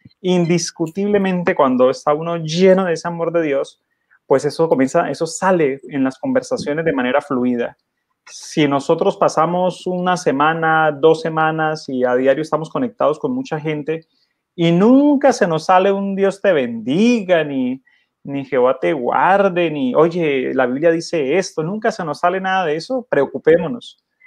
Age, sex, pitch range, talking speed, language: 30-49, male, 145-190 Hz, 160 wpm, Spanish